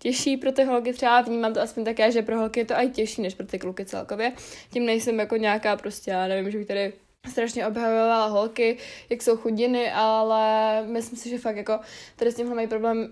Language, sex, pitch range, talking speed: Czech, female, 210-245 Hz, 220 wpm